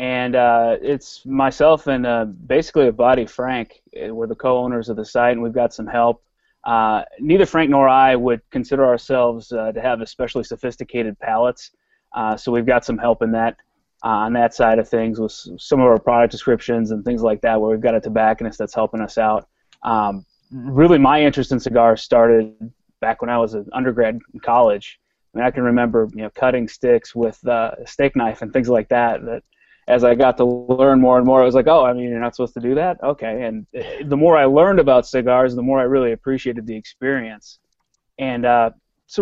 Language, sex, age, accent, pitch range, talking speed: English, male, 20-39, American, 115-135 Hz, 215 wpm